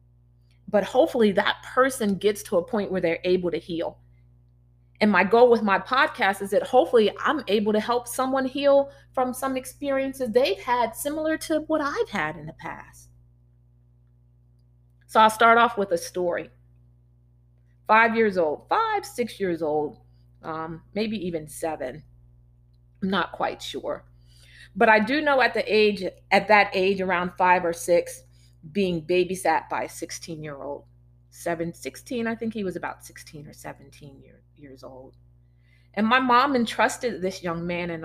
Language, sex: English, female